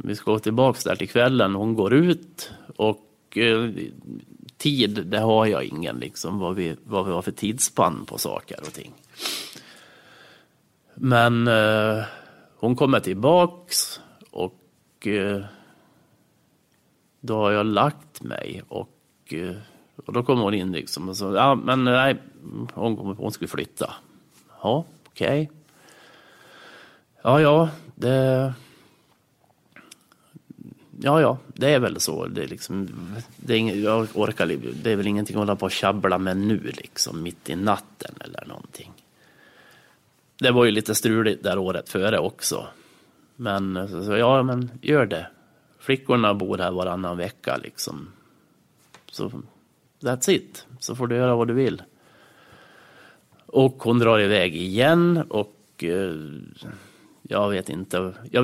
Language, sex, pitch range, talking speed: Swedish, male, 100-125 Hz, 135 wpm